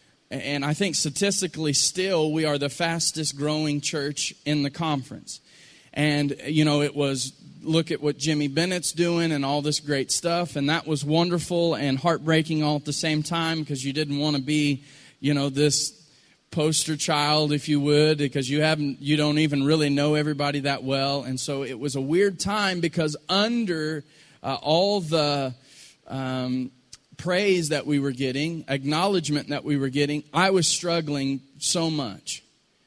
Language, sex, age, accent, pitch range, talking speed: English, male, 30-49, American, 145-170 Hz, 170 wpm